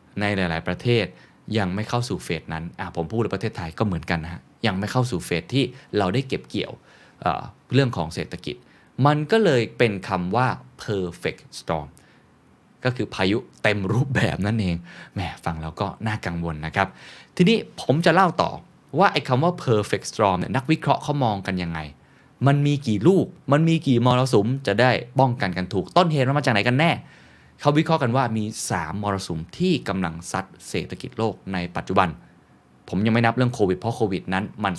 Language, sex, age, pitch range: Thai, male, 20-39, 90-125 Hz